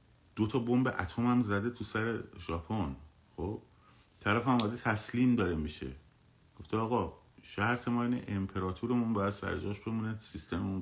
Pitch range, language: 80-110 Hz, Persian